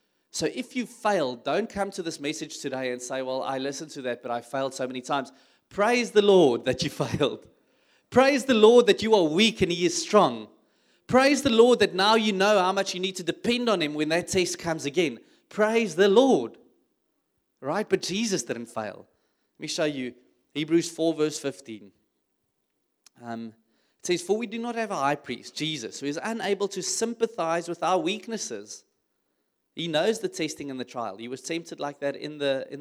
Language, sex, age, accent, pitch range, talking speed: English, male, 30-49, South African, 130-200 Hz, 205 wpm